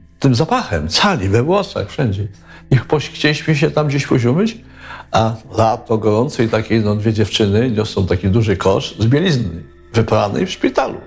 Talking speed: 150 wpm